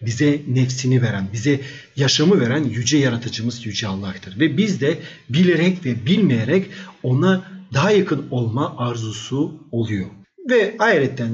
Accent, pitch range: native, 120-190 Hz